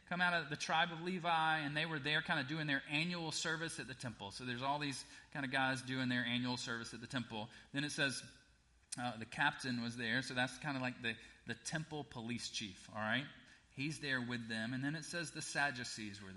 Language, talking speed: English, 240 wpm